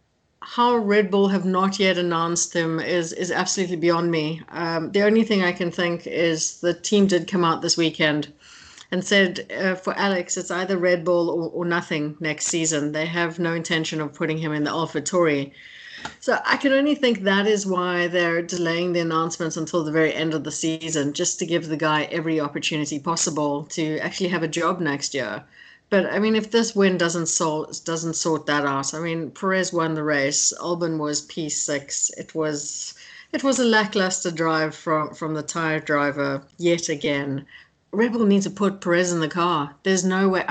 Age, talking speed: 60-79, 200 wpm